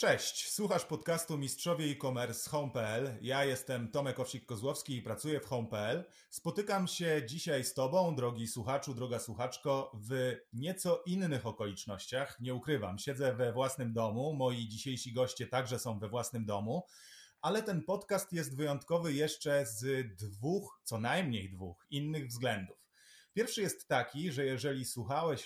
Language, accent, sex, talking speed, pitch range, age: Polish, native, male, 145 wpm, 115-150 Hz, 30-49